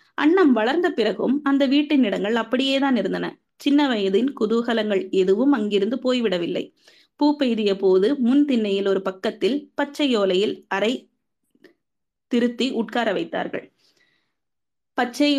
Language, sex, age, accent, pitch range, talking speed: Tamil, female, 20-39, native, 205-275 Hz, 110 wpm